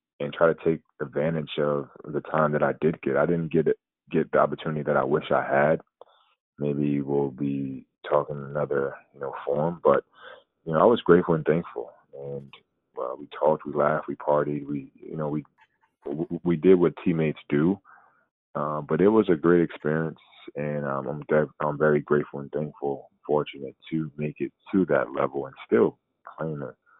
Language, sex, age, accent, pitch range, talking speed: English, male, 20-39, American, 70-75 Hz, 185 wpm